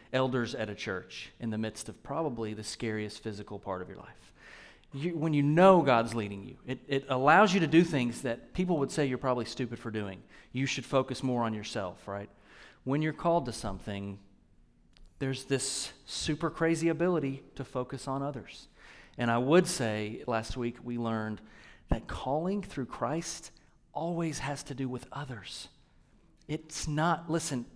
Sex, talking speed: male, 175 wpm